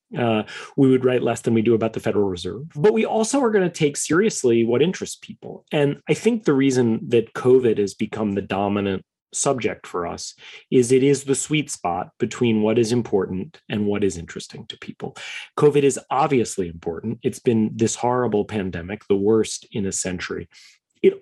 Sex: male